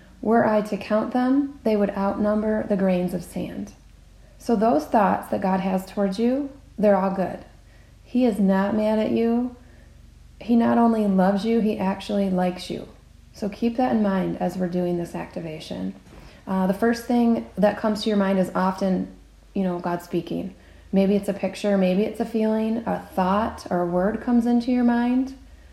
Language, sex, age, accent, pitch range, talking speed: English, female, 30-49, American, 180-220 Hz, 185 wpm